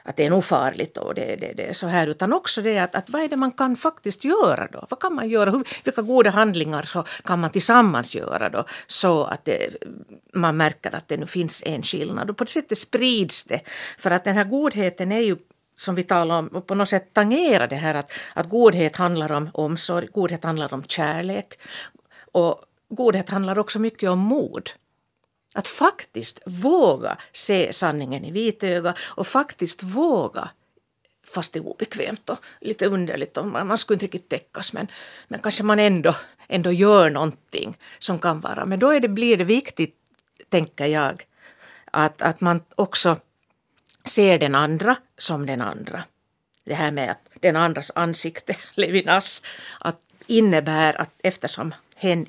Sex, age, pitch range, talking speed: female, 50-69, 165-220 Hz, 180 wpm